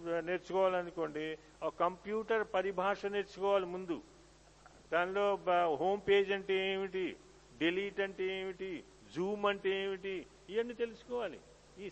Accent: native